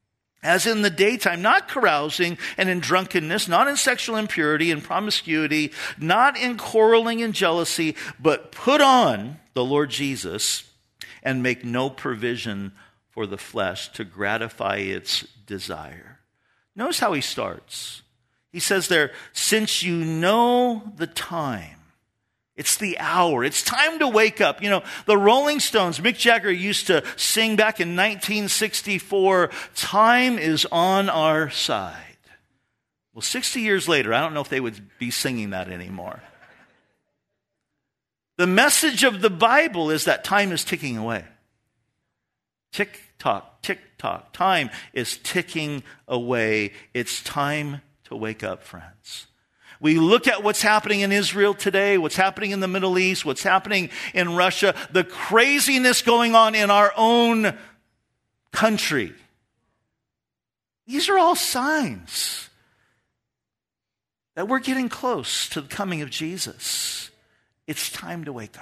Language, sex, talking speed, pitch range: English, male, 135 wpm, 130-220 Hz